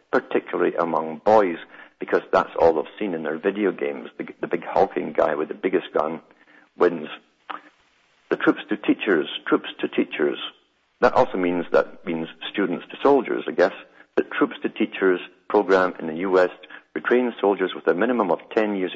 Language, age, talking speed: English, 50-69, 175 wpm